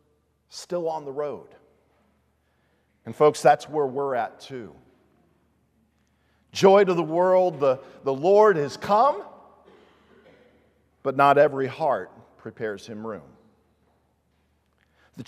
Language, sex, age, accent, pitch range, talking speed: English, male, 50-69, American, 145-235 Hz, 110 wpm